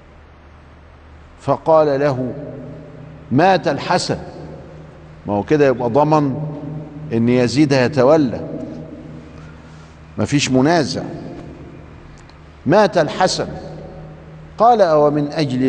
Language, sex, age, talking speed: Arabic, male, 50-69, 75 wpm